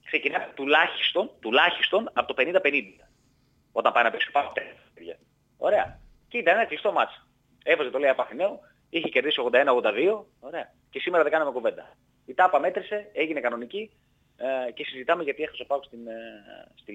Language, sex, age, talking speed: Greek, male, 30-49, 155 wpm